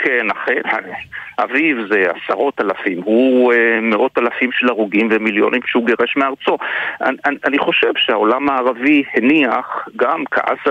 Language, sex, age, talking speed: Hebrew, male, 50-69, 135 wpm